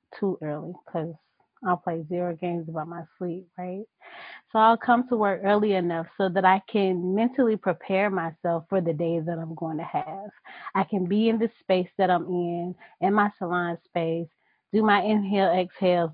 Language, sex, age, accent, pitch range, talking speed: English, female, 30-49, American, 175-215 Hz, 185 wpm